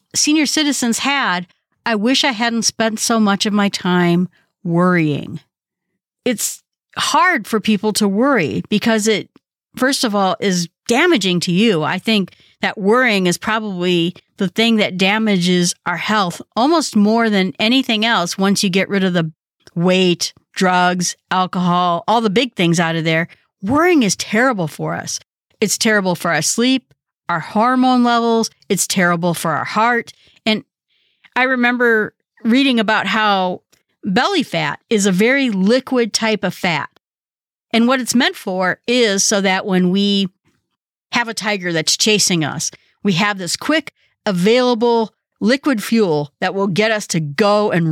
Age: 50-69